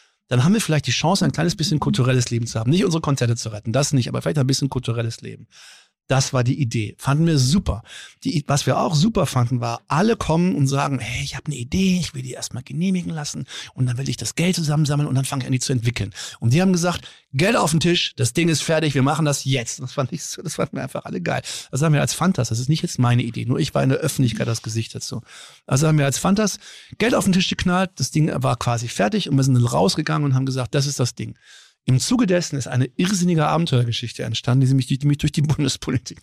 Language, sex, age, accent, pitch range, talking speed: German, male, 50-69, German, 125-155 Hz, 255 wpm